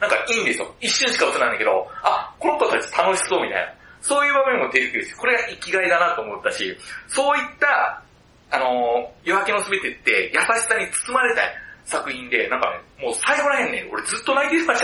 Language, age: Japanese, 30-49